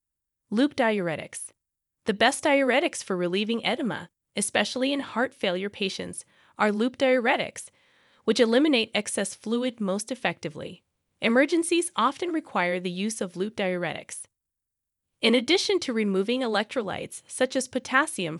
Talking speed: 125 wpm